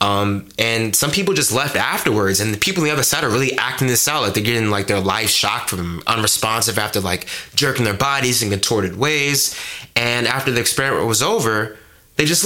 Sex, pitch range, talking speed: male, 100-130 Hz, 215 wpm